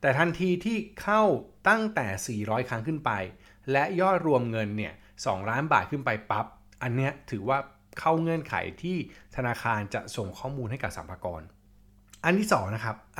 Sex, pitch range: male, 105-150 Hz